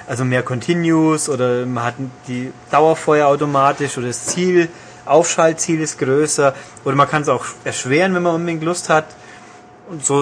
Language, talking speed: German, 165 wpm